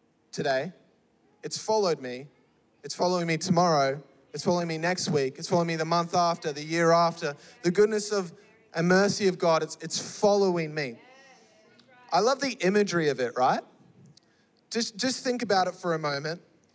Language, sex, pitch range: English, male, 155-200 Hz